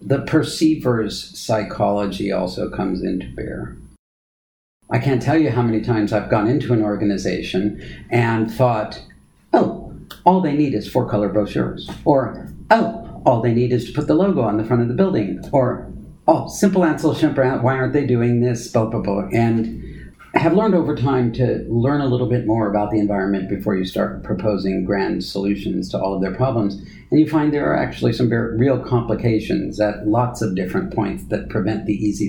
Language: English